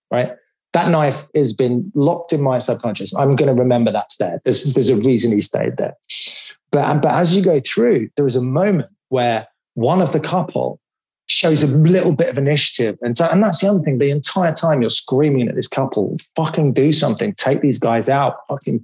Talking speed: 210 wpm